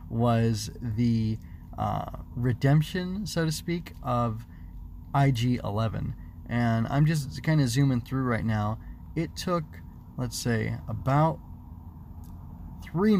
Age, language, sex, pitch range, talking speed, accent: 20-39, English, male, 110-145 Hz, 110 wpm, American